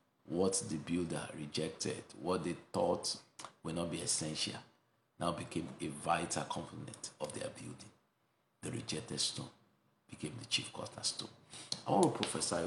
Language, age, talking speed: English, 50-69, 145 wpm